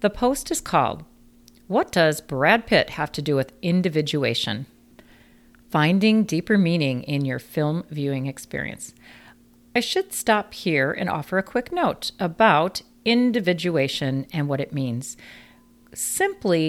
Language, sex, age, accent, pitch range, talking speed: English, female, 40-59, American, 140-215 Hz, 135 wpm